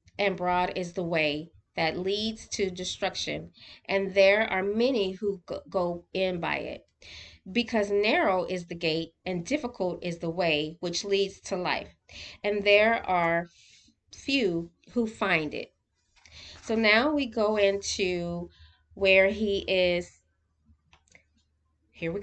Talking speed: 130 wpm